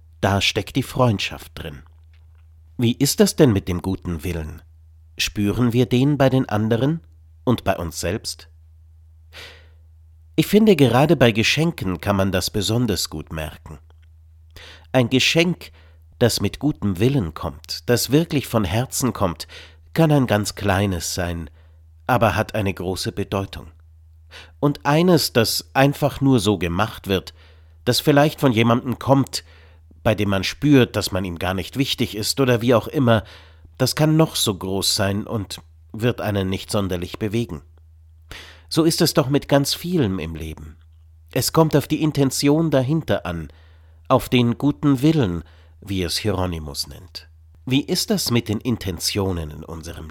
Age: 50-69